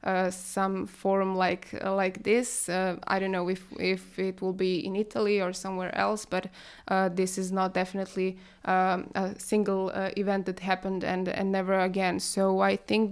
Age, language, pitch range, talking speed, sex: 20-39, English, 190-215 Hz, 190 wpm, female